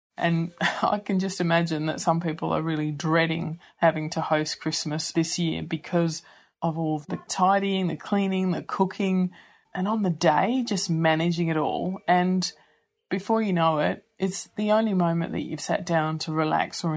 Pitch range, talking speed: 160-185 Hz, 175 wpm